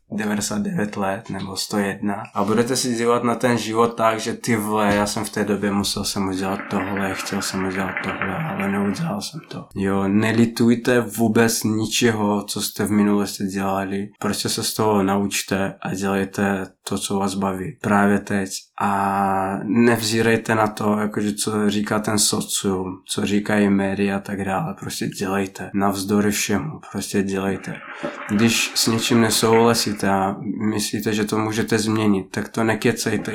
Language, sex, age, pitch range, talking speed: Czech, male, 20-39, 100-115 Hz, 160 wpm